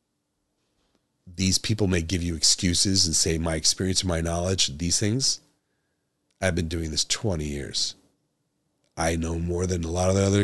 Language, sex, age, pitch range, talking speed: English, male, 40-59, 85-105 Hz, 165 wpm